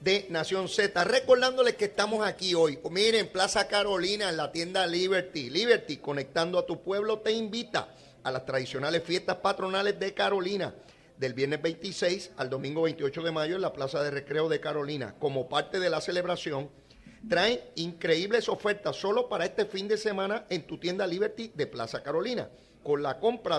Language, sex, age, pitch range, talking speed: Spanish, male, 40-59, 155-215 Hz, 175 wpm